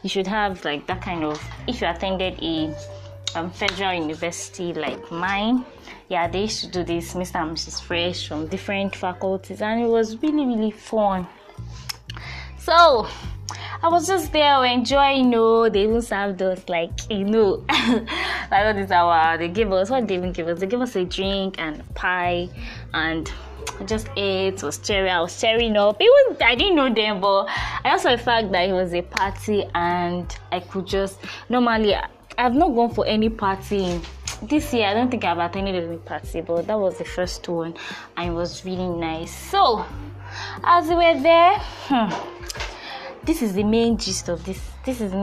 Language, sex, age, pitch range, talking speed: English, female, 10-29, 175-230 Hz, 185 wpm